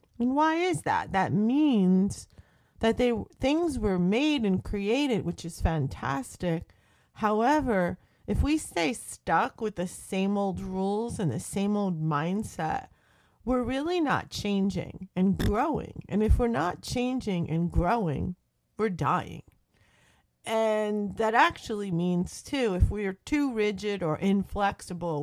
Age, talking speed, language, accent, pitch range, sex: 40-59, 140 wpm, English, American, 175-240 Hz, female